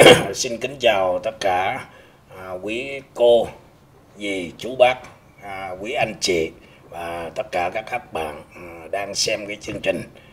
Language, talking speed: Vietnamese, 165 wpm